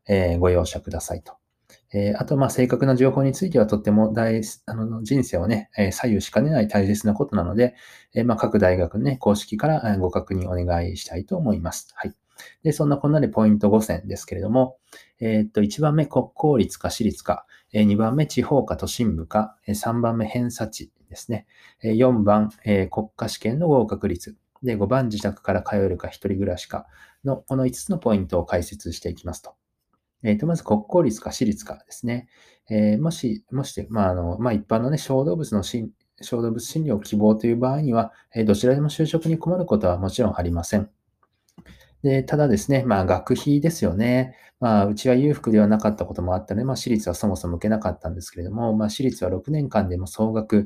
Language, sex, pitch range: Japanese, male, 100-125 Hz